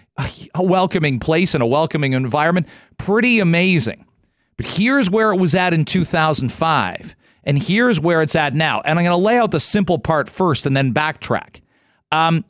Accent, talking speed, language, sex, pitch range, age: American, 180 wpm, English, male, 150-195 Hz, 40-59